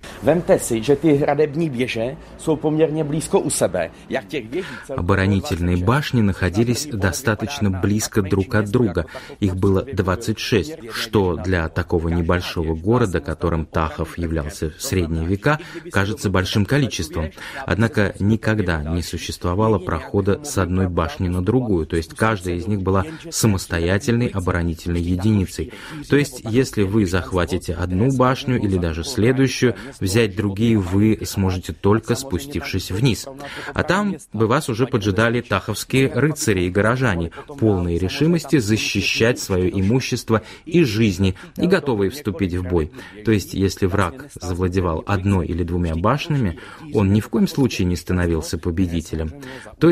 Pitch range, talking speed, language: 90-125 Hz, 120 wpm, Russian